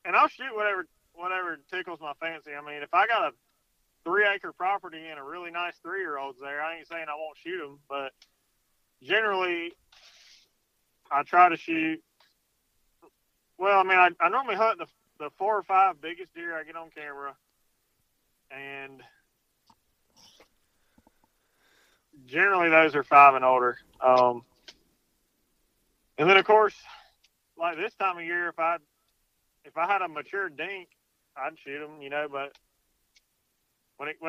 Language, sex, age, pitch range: English, male, 30-49, 145-185 Hz